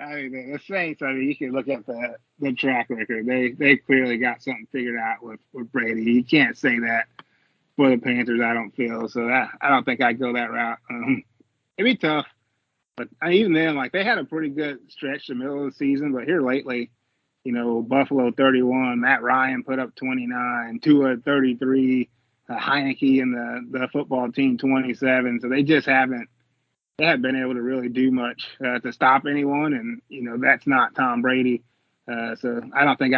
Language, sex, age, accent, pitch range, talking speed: English, male, 20-39, American, 125-140 Hz, 205 wpm